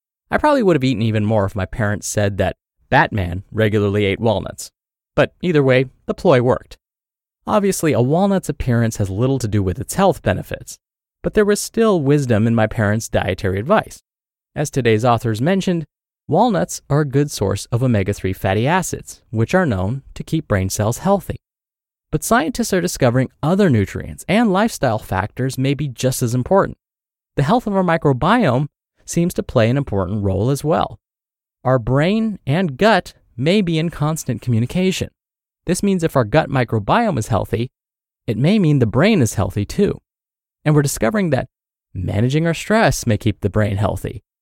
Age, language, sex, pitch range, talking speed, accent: 30-49, English, male, 110-170 Hz, 175 wpm, American